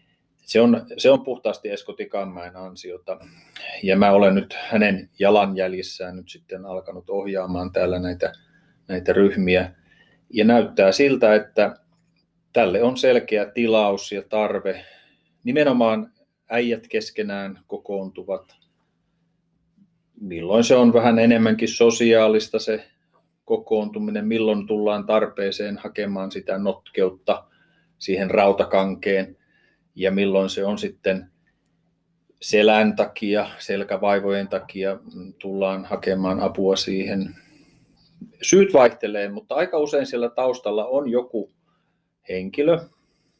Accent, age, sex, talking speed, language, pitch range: native, 30-49, male, 100 wpm, Finnish, 95-115 Hz